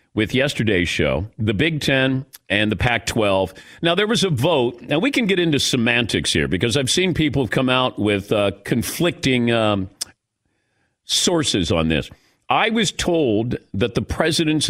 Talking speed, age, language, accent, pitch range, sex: 165 wpm, 50-69, English, American, 115-175 Hz, male